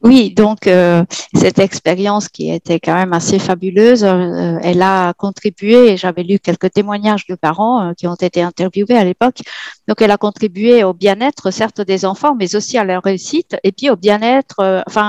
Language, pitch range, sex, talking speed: French, 185-215 Hz, female, 190 wpm